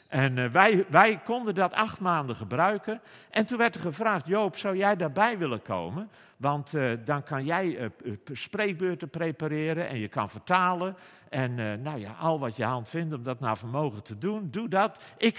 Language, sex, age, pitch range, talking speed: English, male, 50-69, 120-190 Hz, 190 wpm